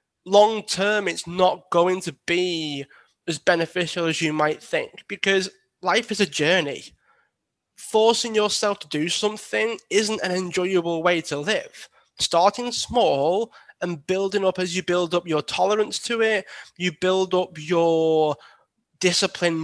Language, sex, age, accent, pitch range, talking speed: English, male, 20-39, British, 165-195 Hz, 145 wpm